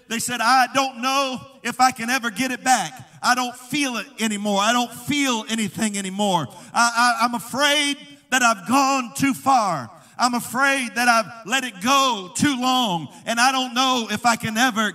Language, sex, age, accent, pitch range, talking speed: English, male, 50-69, American, 225-265 Hz, 185 wpm